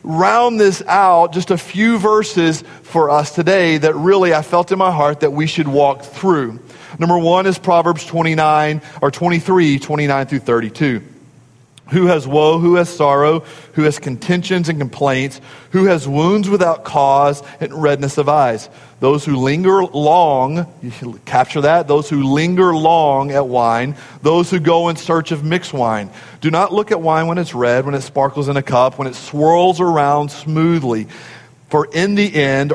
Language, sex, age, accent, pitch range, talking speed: English, male, 40-59, American, 135-170 Hz, 180 wpm